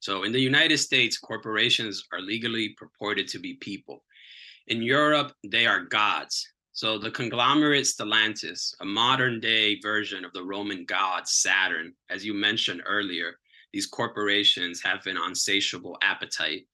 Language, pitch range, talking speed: English, 105-130 Hz, 145 wpm